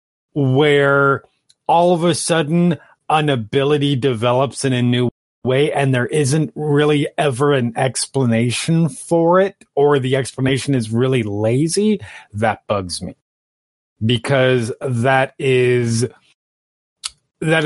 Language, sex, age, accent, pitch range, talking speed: English, male, 30-49, American, 105-140 Hz, 115 wpm